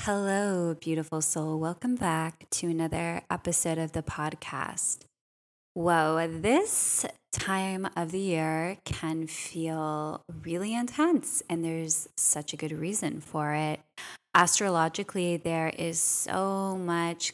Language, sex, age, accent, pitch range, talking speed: English, female, 20-39, American, 160-185 Hz, 120 wpm